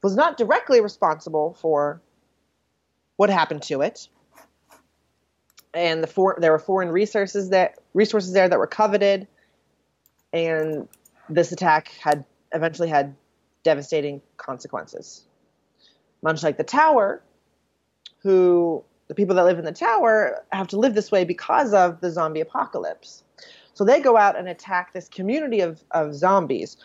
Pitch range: 150-195 Hz